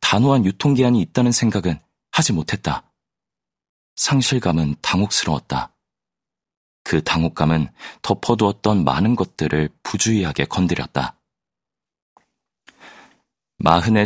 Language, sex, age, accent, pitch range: Korean, male, 30-49, native, 75-110 Hz